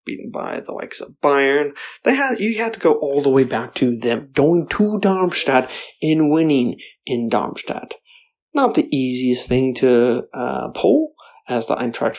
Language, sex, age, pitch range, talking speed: English, male, 20-39, 135-195 Hz, 170 wpm